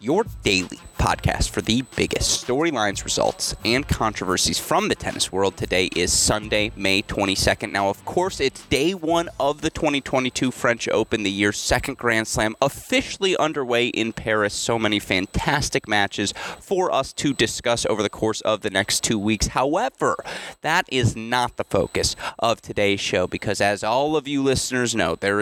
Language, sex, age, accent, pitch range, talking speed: English, male, 30-49, American, 105-135 Hz, 170 wpm